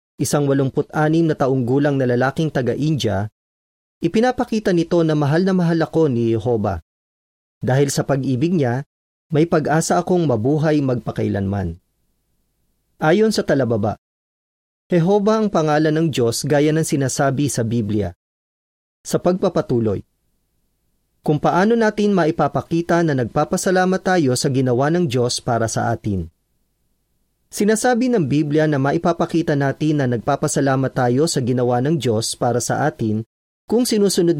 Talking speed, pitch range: 125 wpm, 110-165 Hz